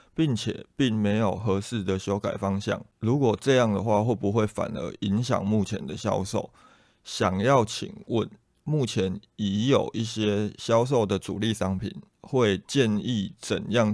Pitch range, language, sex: 100-120 Hz, Chinese, male